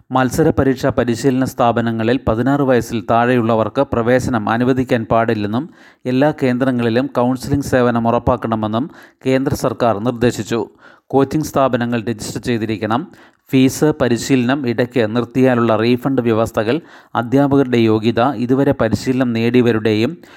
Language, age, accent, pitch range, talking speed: Malayalam, 30-49, native, 115-130 Hz, 95 wpm